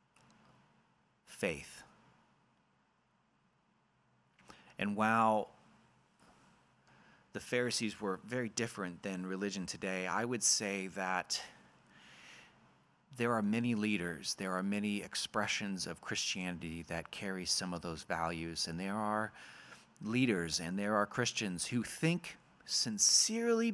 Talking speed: 105 wpm